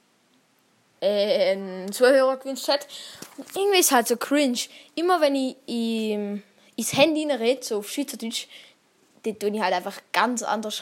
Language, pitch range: German, 225-285 Hz